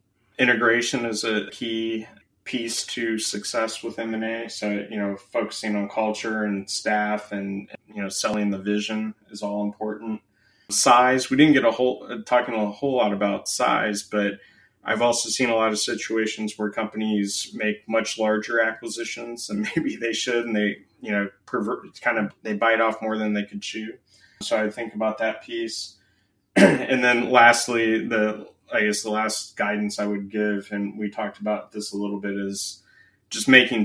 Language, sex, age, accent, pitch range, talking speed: English, male, 20-39, American, 105-115 Hz, 185 wpm